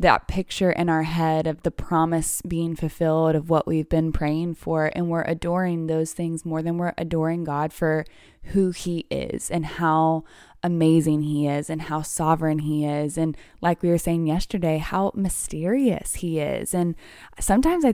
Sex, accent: female, American